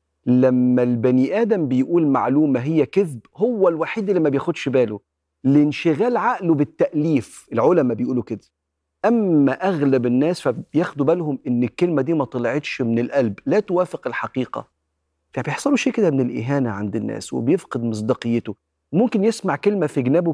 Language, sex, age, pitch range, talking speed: Arabic, male, 40-59, 115-165 Hz, 140 wpm